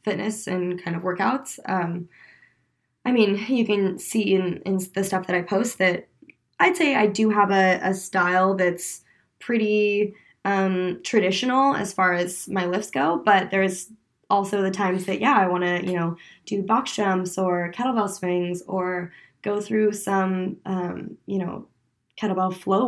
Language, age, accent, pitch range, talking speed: English, 20-39, American, 180-210 Hz, 170 wpm